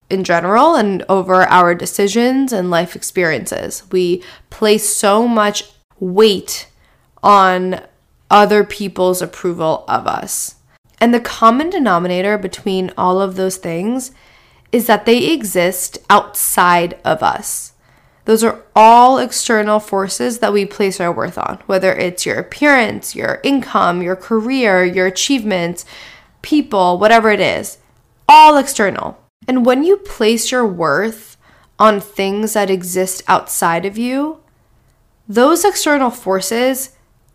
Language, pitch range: English, 185-235 Hz